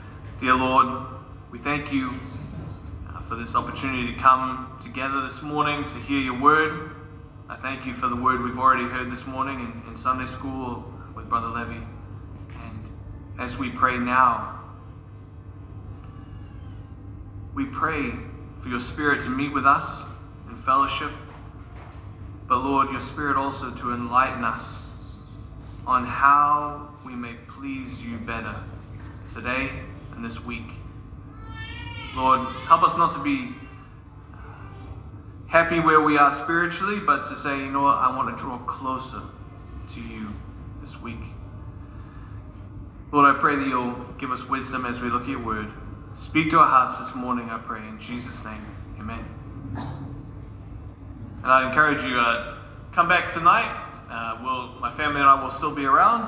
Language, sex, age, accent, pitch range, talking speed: English, male, 20-39, American, 105-130 Hz, 150 wpm